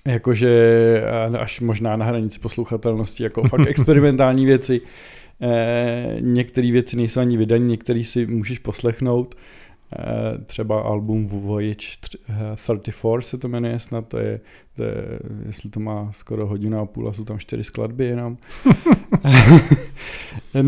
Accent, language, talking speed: native, Czech, 135 wpm